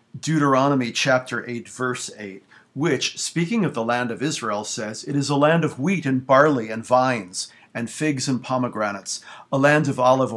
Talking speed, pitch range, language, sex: 180 wpm, 115-140 Hz, English, male